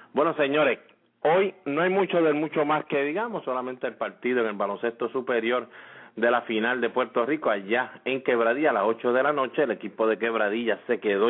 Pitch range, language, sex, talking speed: 110-125 Hz, English, male, 205 wpm